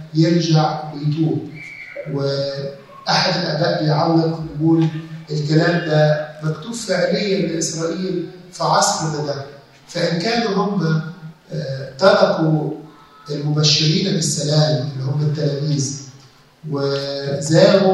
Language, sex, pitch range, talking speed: Arabic, male, 150-180 Hz, 85 wpm